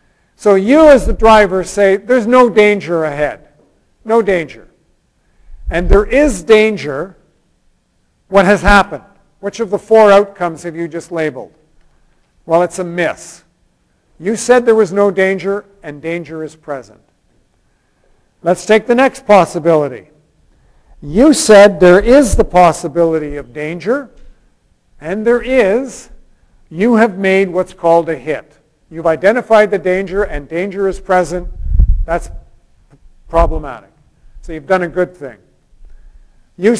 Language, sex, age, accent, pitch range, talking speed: English, male, 50-69, American, 160-215 Hz, 135 wpm